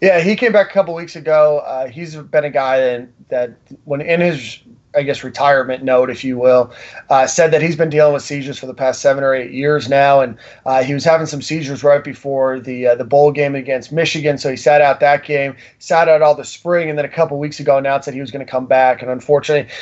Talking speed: 255 wpm